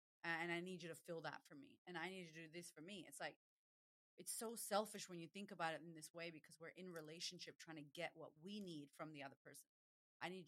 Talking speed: 270 wpm